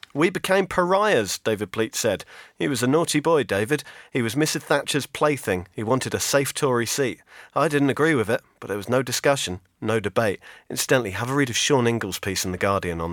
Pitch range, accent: 110-155 Hz, British